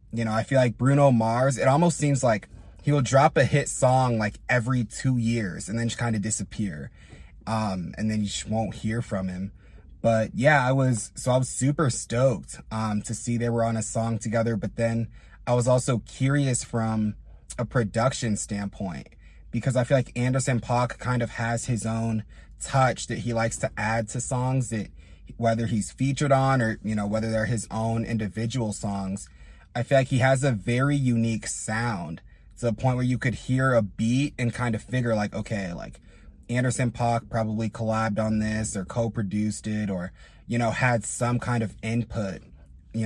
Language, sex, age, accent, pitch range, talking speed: English, male, 20-39, American, 110-125 Hz, 195 wpm